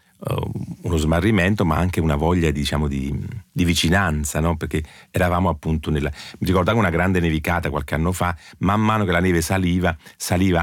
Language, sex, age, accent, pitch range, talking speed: Italian, male, 40-59, native, 80-105 Hz, 170 wpm